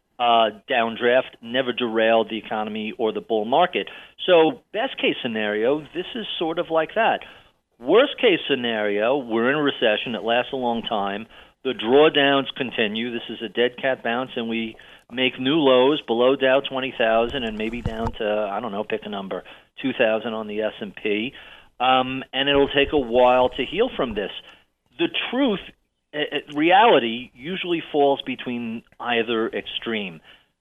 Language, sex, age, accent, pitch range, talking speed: English, male, 40-59, American, 115-140 Hz, 160 wpm